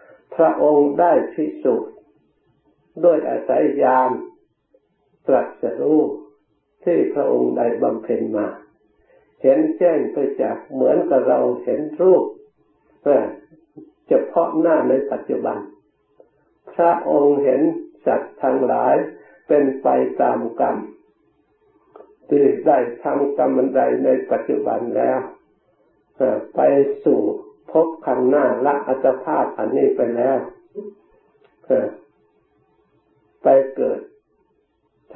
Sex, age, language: male, 60-79, Thai